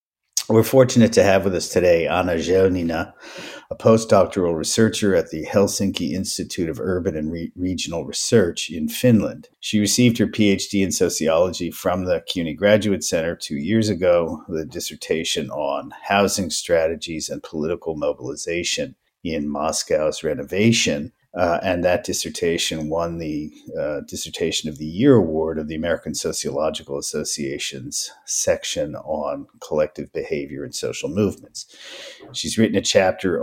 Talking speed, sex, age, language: 140 wpm, male, 50-69, English